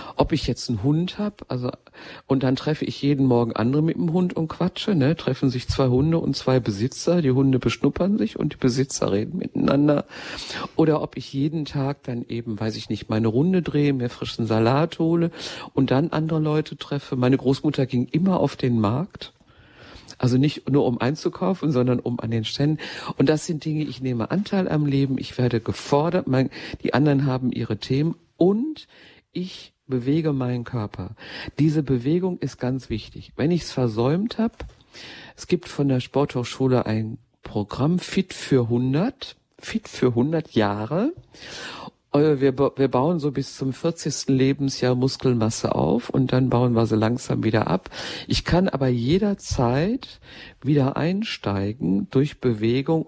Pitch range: 125-155 Hz